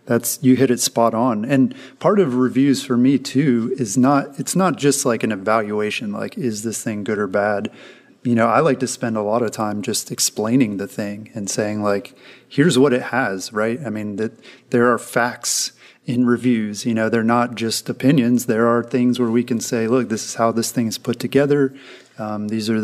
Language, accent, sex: English, American, male